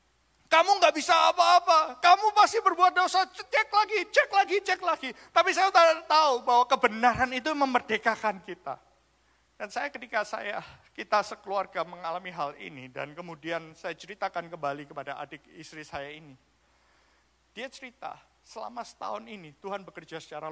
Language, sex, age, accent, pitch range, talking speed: Indonesian, male, 50-69, native, 145-210 Hz, 145 wpm